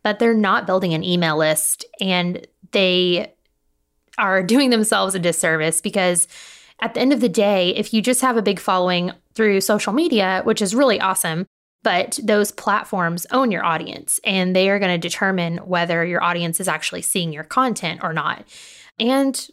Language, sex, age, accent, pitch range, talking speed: English, female, 20-39, American, 180-220 Hz, 175 wpm